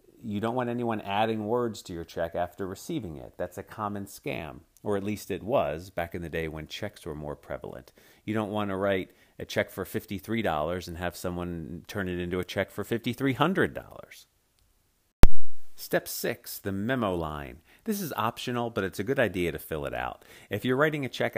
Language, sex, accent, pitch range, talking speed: English, male, American, 85-115 Hz, 200 wpm